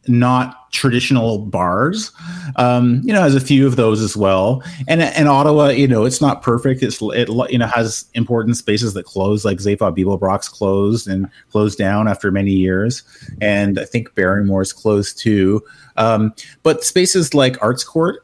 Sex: male